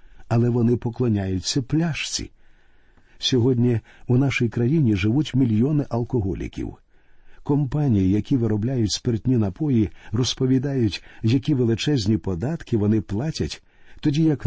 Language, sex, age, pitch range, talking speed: Ukrainian, male, 50-69, 105-130 Hz, 100 wpm